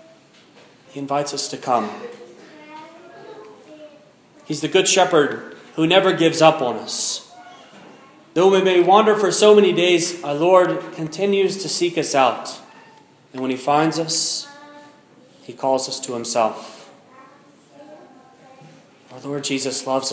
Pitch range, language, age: 135-180 Hz, English, 30-49